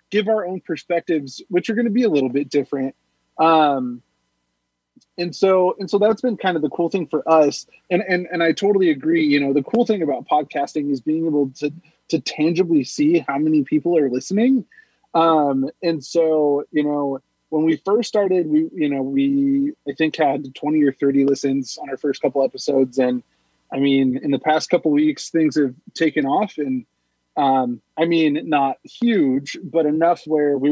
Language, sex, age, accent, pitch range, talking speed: English, male, 20-39, American, 135-175 Hz, 195 wpm